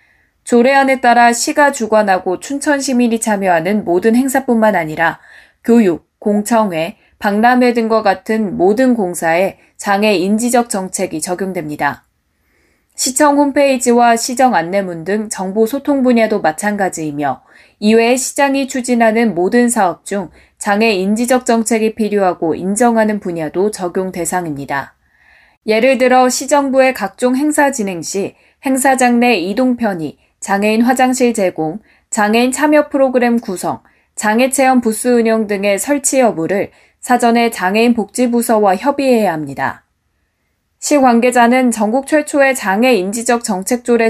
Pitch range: 190-250 Hz